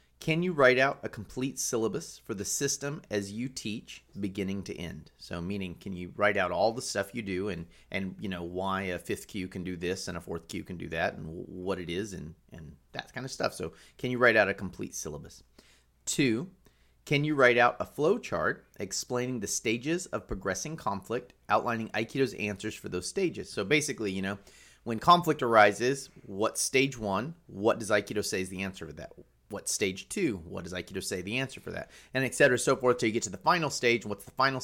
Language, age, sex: English, 30-49, male